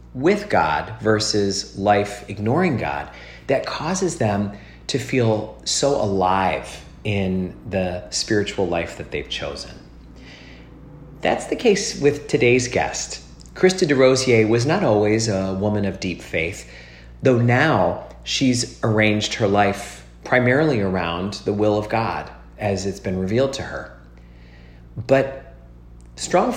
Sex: male